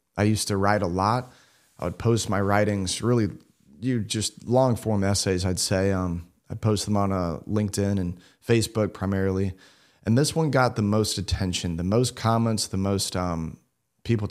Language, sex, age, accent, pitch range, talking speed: English, male, 30-49, American, 95-115 Hz, 175 wpm